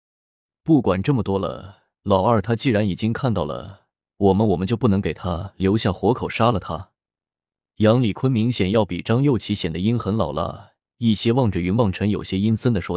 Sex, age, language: male, 20-39, Chinese